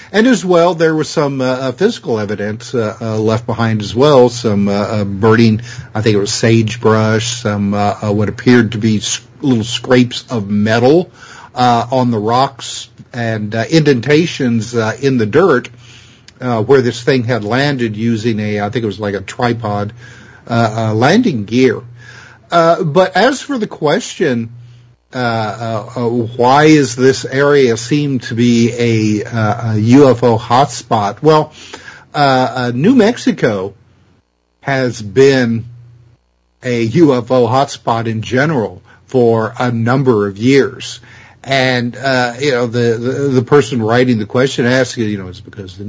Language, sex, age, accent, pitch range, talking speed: English, male, 50-69, American, 110-135 Hz, 160 wpm